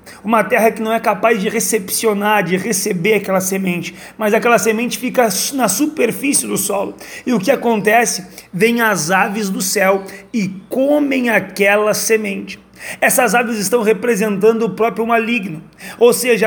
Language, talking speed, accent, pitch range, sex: Portuguese, 155 wpm, Brazilian, 200-240 Hz, male